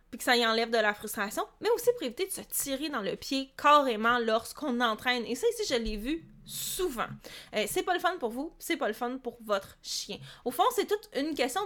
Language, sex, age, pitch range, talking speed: French, female, 20-39, 235-320 Hz, 245 wpm